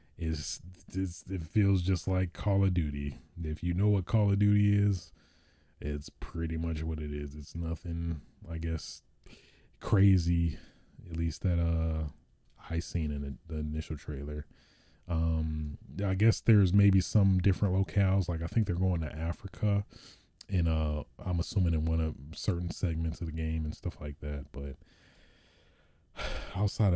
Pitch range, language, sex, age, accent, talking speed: 80-95 Hz, English, male, 20-39, American, 160 wpm